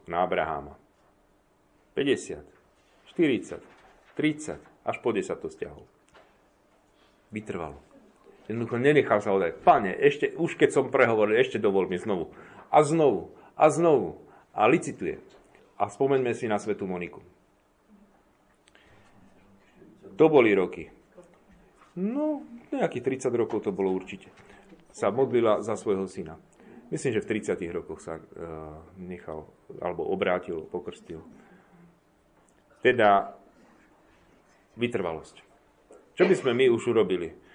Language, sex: Slovak, male